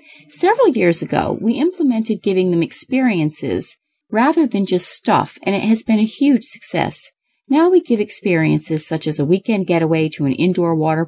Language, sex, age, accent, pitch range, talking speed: English, female, 30-49, American, 175-270 Hz, 175 wpm